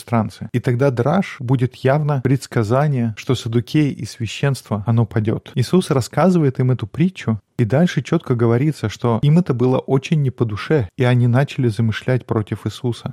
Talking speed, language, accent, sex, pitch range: 160 wpm, Russian, native, male, 115-140 Hz